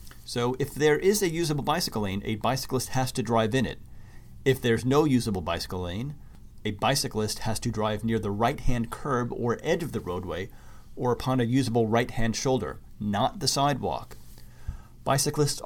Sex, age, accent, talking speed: male, 40-59, American, 175 wpm